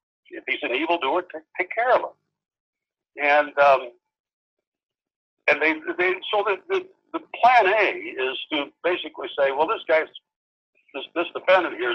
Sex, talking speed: male, 155 wpm